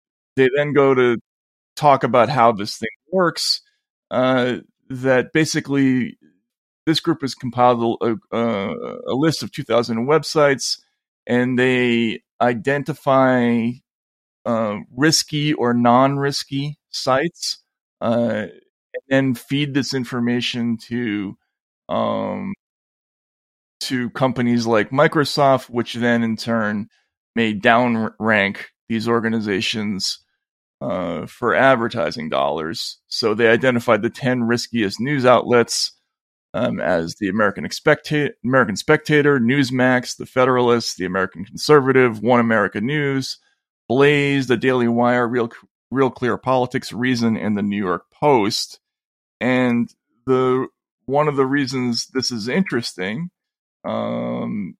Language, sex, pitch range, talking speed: English, male, 115-140 Hz, 115 wpm